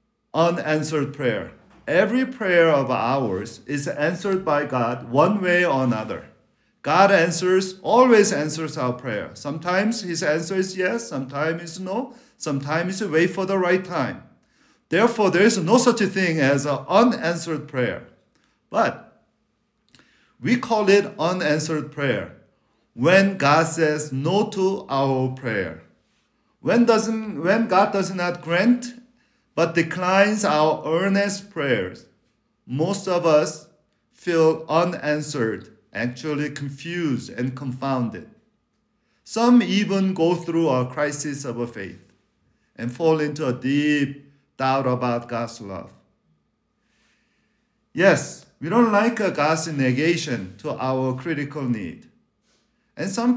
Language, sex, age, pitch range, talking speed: English, male, 50-69, 140-195 Hz, 125 wpm